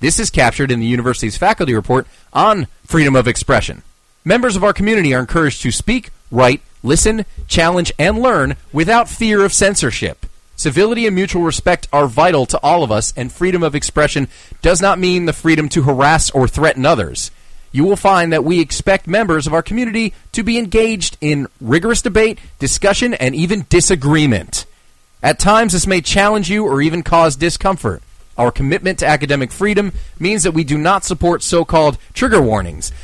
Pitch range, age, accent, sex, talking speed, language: 135-190 Hz, 30-49, American, male, 175 wpm, English